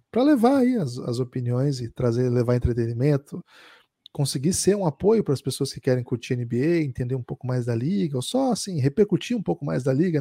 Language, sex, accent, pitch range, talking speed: Portuguese, male, Brazilian, 130-165 Hz, 210 wpm